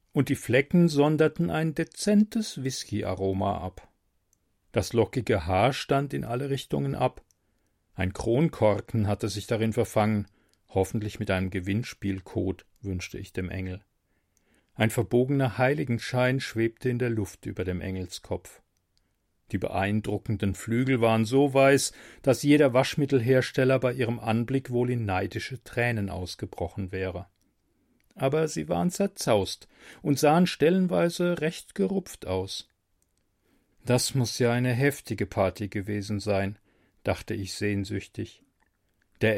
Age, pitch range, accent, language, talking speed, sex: 40-59, 95-135 Hz, German, German, 120 wpm, male